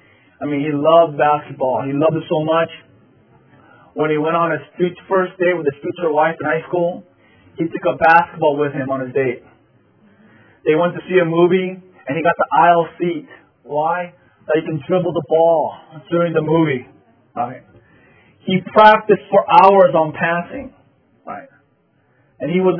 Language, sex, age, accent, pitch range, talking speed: English, male, 20-39, American, 145-185 Hz, 175 wpm